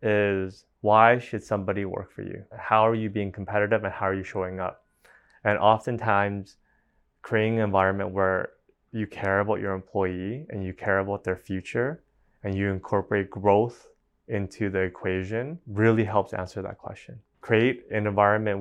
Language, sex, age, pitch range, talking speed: English, male, 20-39, 95-110 Hz, 160 wpm